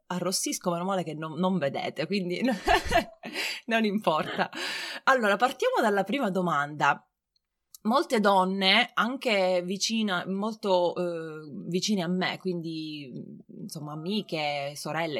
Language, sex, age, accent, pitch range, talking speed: Italian, female, 20-39, native, 175-215 Hz, 110 wpm